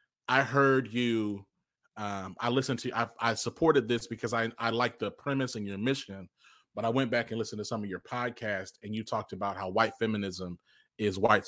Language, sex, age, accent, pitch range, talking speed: English, male, 30-49, American, 105-135 Hz, 215 wpm